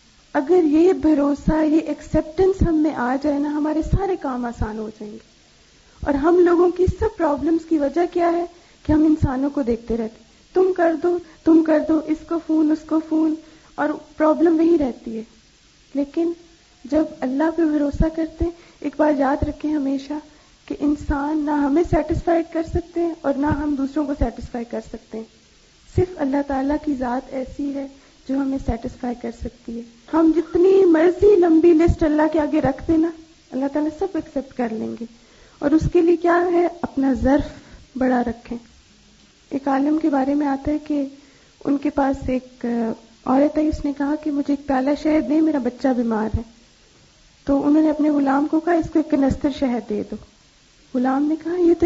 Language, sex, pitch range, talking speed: Urdu, female, 270-320 Hz, 185 wpm